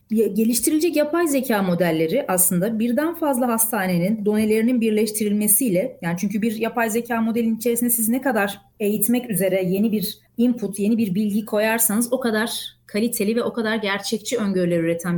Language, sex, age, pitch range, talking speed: Turkish, female, 30-49, 200-265 Hz, 150 wpm